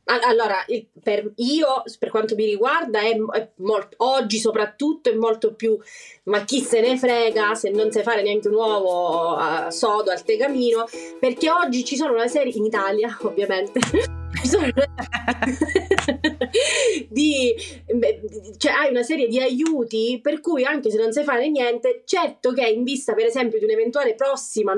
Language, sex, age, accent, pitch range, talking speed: Italian, female, 30-49, native, 215-265 Hz, 160 wpm